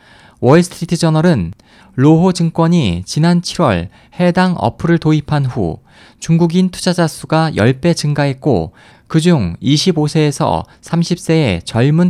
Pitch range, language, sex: 125-175 Hz, Korean, male